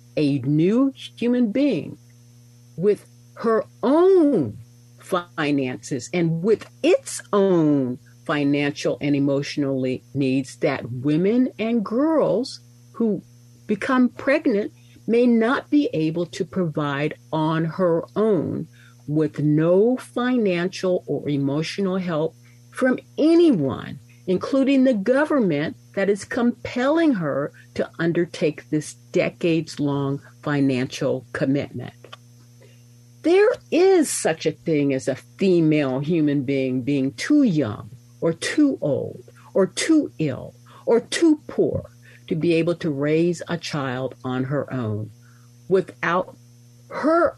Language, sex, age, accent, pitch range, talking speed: English, female, 50-69, American, 125-195 Hz, 110 wpm